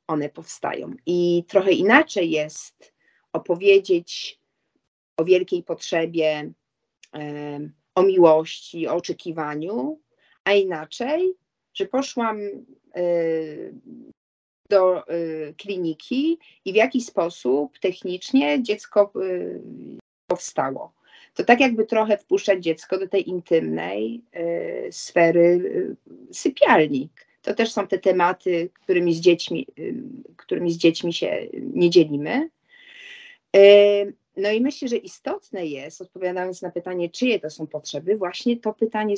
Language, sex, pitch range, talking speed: Polish, female, 165-240 Hz, 100 wpm